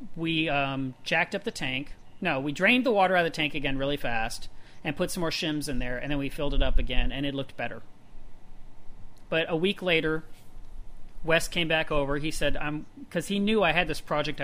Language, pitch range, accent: English, 130-160 Hz, American